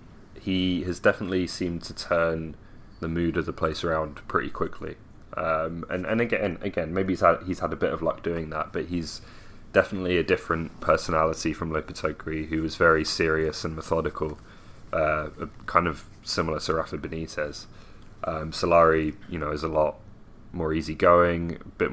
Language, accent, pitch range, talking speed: English, British, 80-90 Hz, 170 wpm